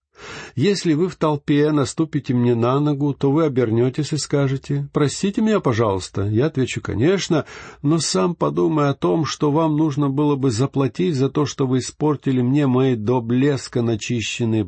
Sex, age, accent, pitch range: male, 50-69, native, 115-155 Hz